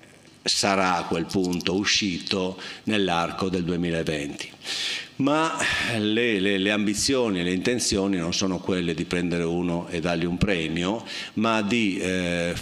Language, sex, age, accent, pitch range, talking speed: Italian, male, 50-69, native, 90-100 Hz, 140 wpm